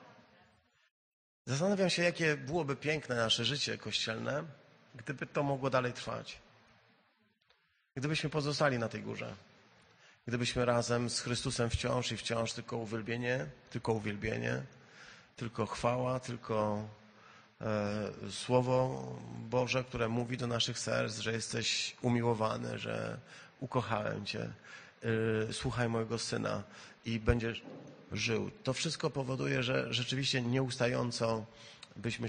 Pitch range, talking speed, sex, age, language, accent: 115-145 Hz, 105 wpm, male, 30-49, Polish, native